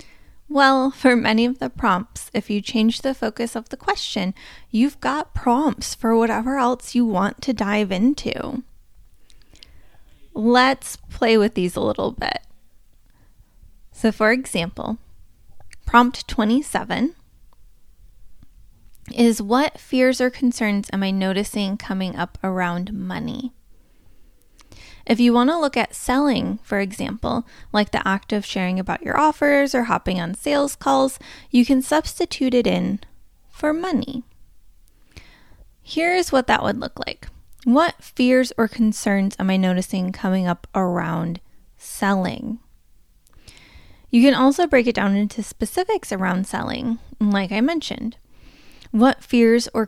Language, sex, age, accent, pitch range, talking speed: English, female, 10-29, American, 200-260 Hz, 135 wpm